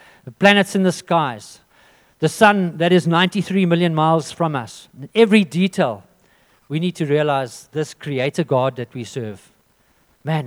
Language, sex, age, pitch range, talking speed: English, male, 50-69, 120-160 Hz, 155 wpm